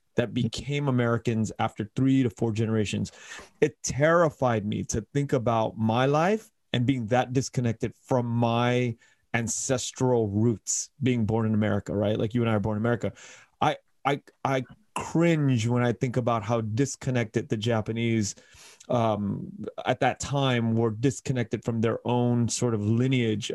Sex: male